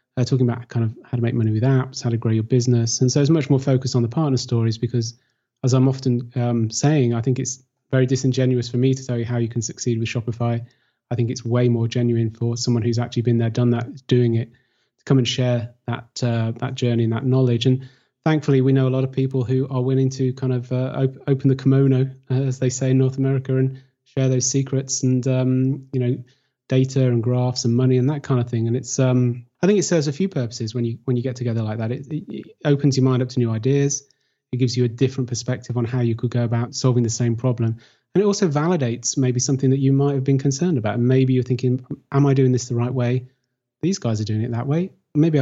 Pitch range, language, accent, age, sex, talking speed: 120-135 Hz, English, British, 30-49, male, 250 wpm